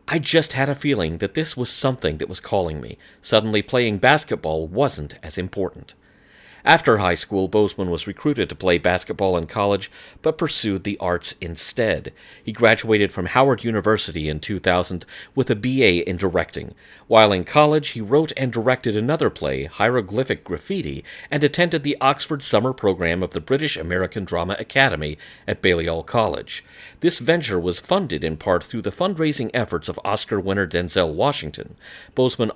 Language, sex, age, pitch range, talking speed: English, male, 40-59, 90-135 Hz, 165 wpm